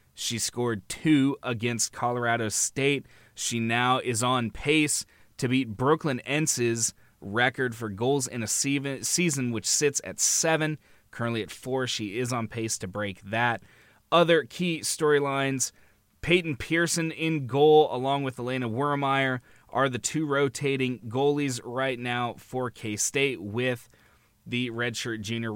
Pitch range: 115-145 Hz